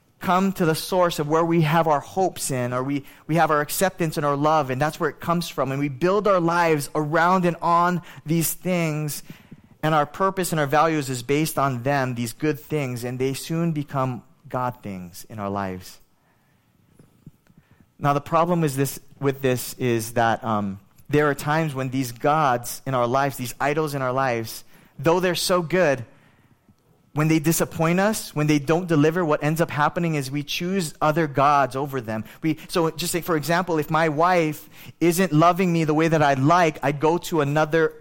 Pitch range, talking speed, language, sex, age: 135-165 Hz, 200 wpm, English, male, 20-39